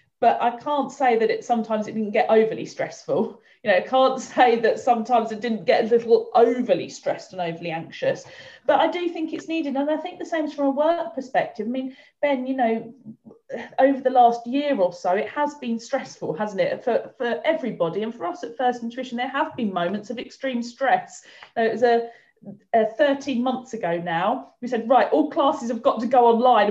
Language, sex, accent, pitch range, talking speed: English, female, British, 220-285 Hz, 220 wpm